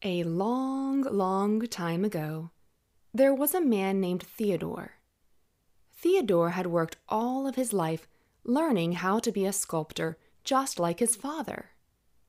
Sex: female